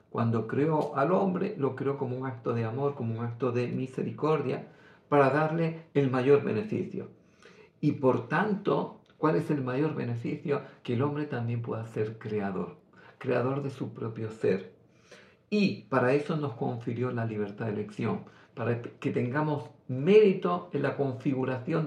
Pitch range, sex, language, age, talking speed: 120-150 Hz, male, Greek, 50-69, 155 wpm